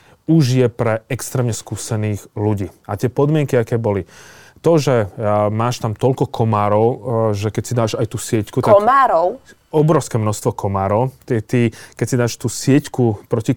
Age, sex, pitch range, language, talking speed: 30-49, male, 105-125 Hz, Slovak, 160 wpm